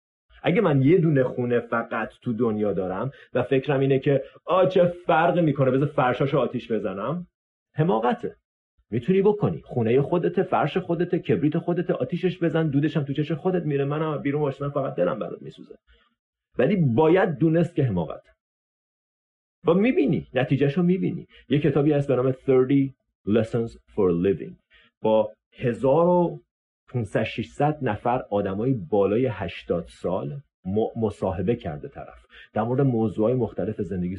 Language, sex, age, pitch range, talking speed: Persian, male, 40-59, 105-145 Hz, 140 wpm